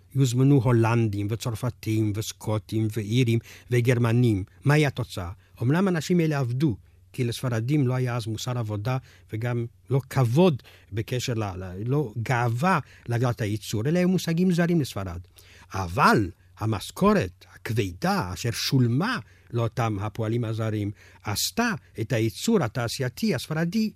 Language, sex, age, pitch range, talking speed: Hebrew, male, 50-69, 100-145 Hz, 120 wpm